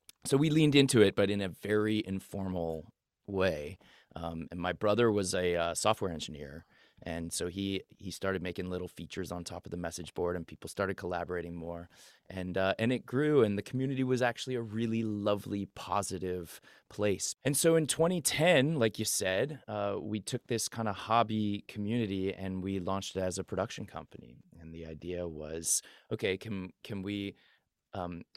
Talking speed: 180 wpm